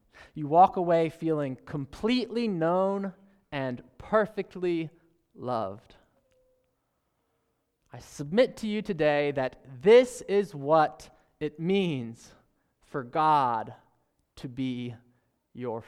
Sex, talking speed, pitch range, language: male, 95 wpm, 145-205 Hz, English